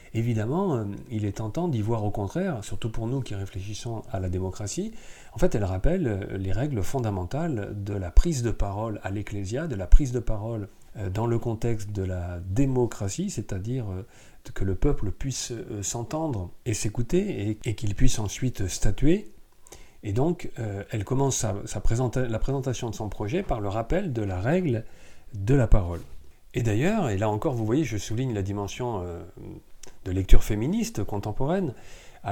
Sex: male